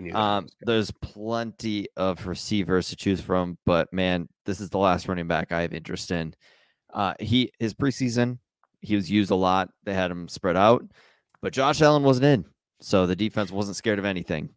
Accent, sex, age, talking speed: American, male, 20-39, 190 wpm